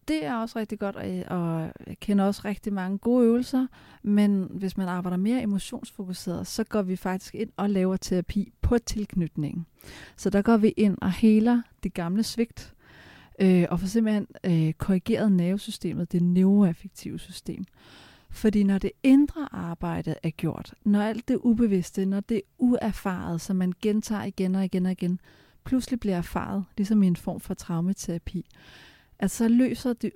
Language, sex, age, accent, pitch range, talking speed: Danish, female, 40-59, native, 185-230 Hz, 165 wpm